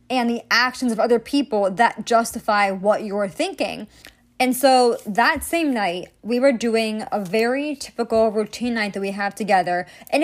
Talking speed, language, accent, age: 170 wpm, English, American, 20-39